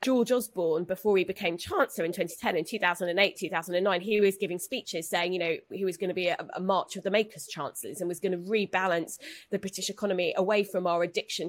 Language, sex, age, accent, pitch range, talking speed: English, female, 20-39, British, 180-230 Hz, 220 wpm